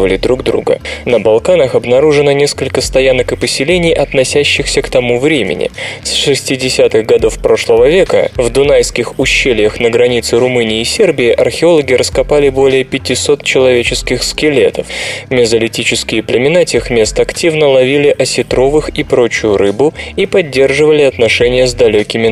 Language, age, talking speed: Russian, 20-39, 125 wpm